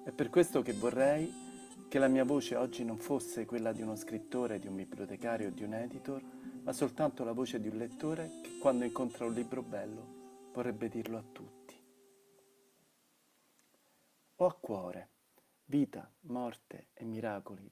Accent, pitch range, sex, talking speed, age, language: native, 115-140 Hz, male, 160 wpm, 40-59, Italian